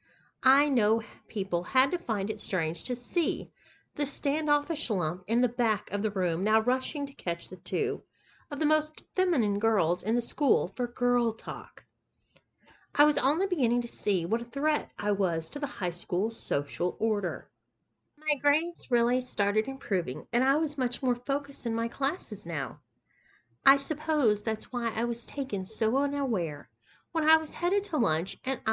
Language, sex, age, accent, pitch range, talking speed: English, female, 40-59, American, 200-285 Hz, 175 wpm